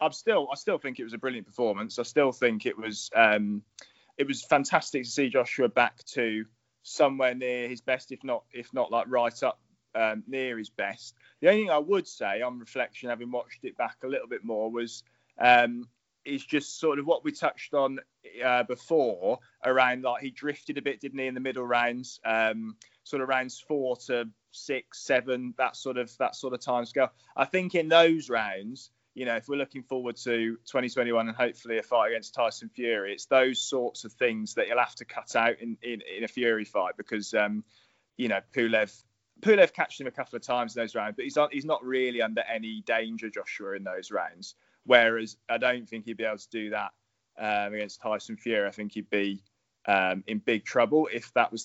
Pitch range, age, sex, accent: 110-130 Hz, 20-39, male, British